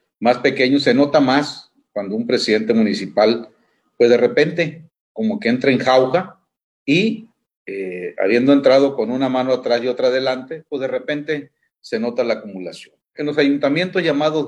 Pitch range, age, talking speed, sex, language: 120-180 Hz, 40-59, 160 wpm, male, Spanish